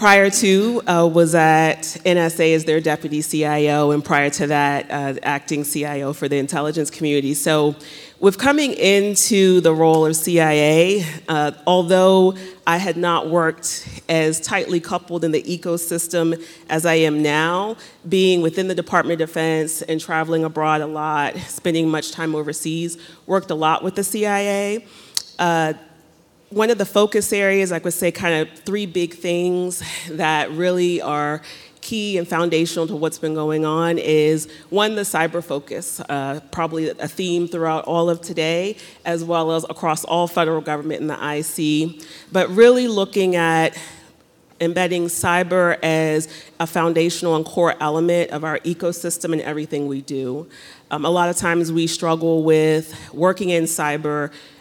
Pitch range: 155-175 Hz